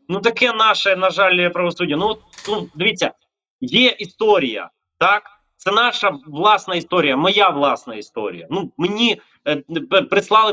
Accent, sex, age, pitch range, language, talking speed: native, male, 30-49, 160-215 Hz, Ukrainian, 140 wpm